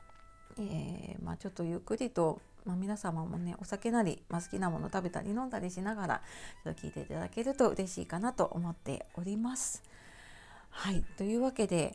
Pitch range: 170-230 Hz